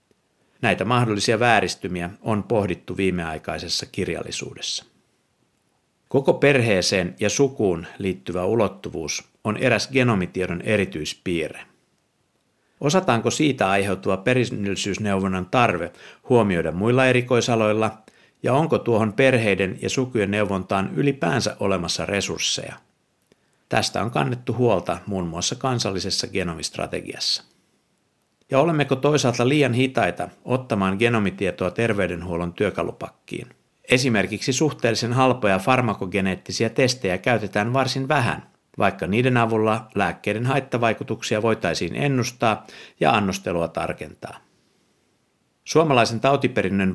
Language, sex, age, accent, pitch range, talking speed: Finnish, male, 60-79, native, 95-125 Hz, 90 wpm